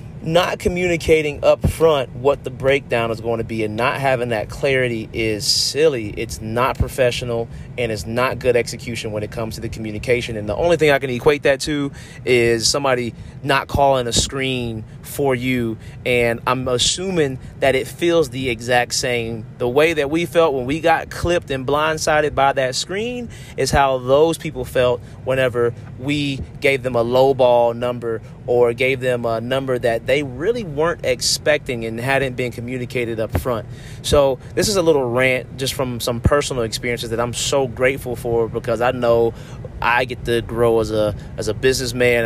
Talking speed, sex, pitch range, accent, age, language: 185 wpm, male, 120-140 Hz, American, 30-49, English